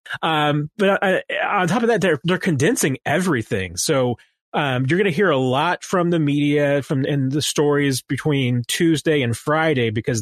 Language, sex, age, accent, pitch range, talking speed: English, male, 30-49, American, 125-155 Hz, 180 wpm